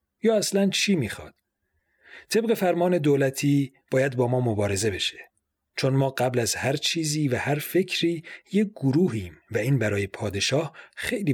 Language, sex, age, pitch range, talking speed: Persian, male, 40-59, 115-165 Hz, 150 wpm